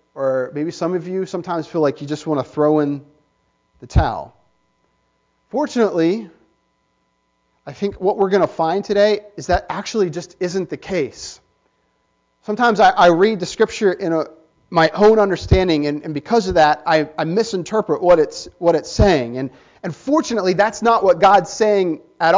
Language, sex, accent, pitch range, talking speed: English, male, American, 155-210 Hz, 175 wpm